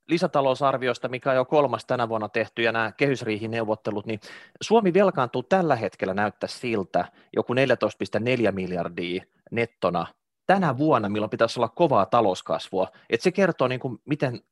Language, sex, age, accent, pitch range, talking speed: Finnish, male, 30-49, native, 110-155 Hz, 145 wpm